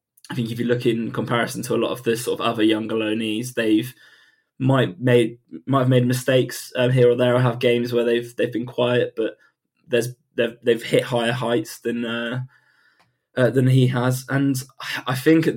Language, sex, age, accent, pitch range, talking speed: English, male, 20-39, British, 115-125 Hz, 205 wpm